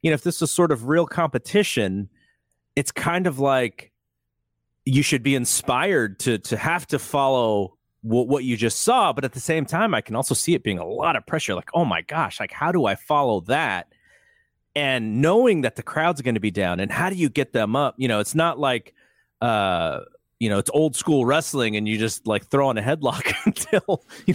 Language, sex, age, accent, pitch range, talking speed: English, male, 30-49, American, 105-150 Hz, 220 wpm